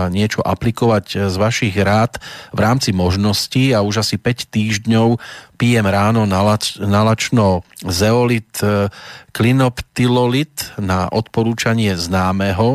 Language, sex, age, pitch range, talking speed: Slovak, male, 40-59, 100-120 Hz, 100 wpm